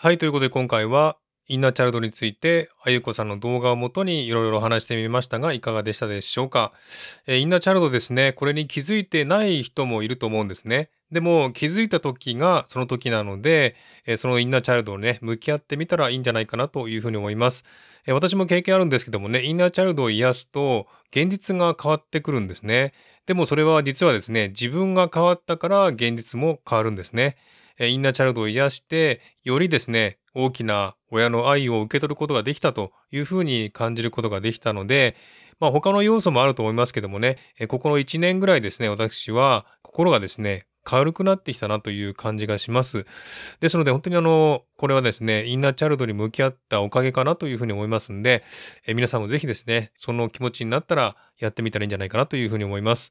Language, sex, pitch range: Japanese, male, 115-155 Hz